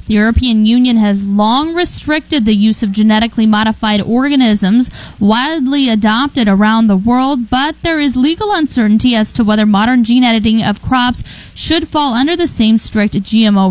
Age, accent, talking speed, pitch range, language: 10-29, American, 160 wpm, 215-260 Hz, English